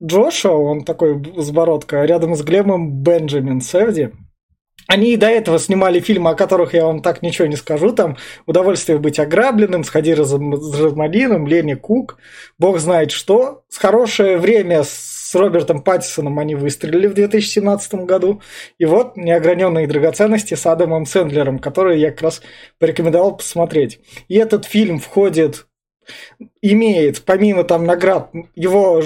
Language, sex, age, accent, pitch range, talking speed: Russian, male, 20-39, native, 155-195 Hz, 145 wpm